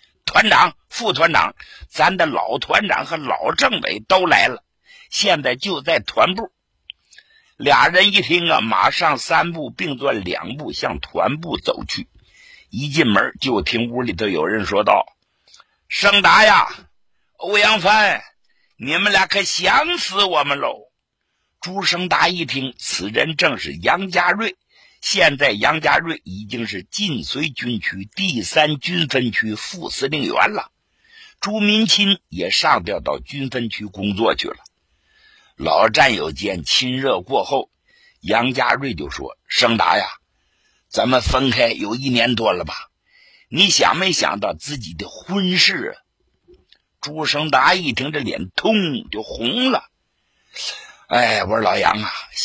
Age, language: 60-79, Chinese